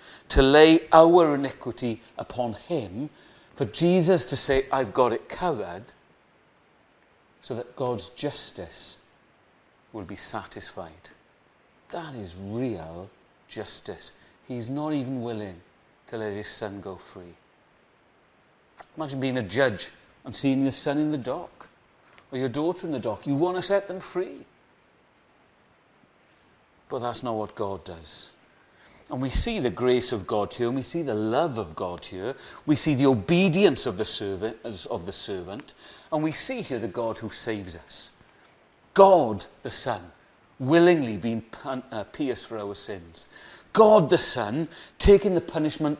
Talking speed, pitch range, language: 145 wpm, 110-160 Hz, English